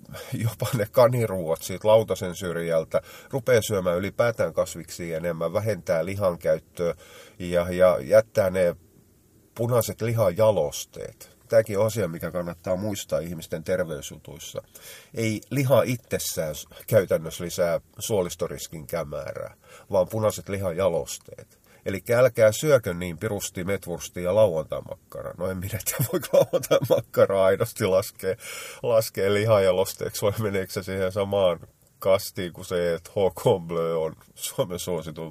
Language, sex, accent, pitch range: Finnish, male, native, 90-125 Hz